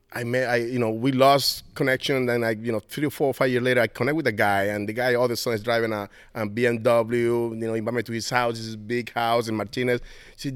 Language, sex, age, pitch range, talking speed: English, male, 30-49, 100-135 Hz, 285 wpm